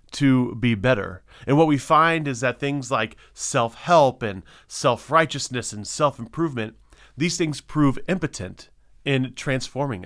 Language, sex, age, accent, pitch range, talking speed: English, male, 30-49, American, 115-150 Hz, 130 wpm